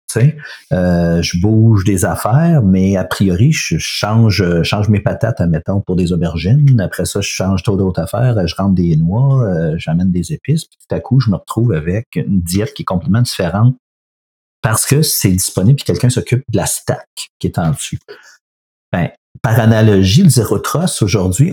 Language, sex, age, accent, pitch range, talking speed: French, male, 50-69, Canadian, 95-135 Hz, 185 wpm